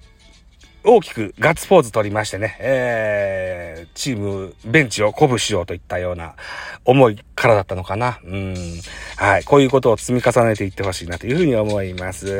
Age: 40-59